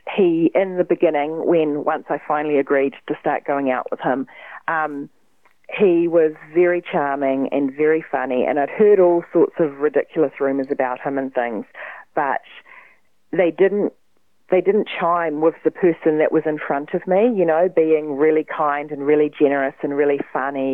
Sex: female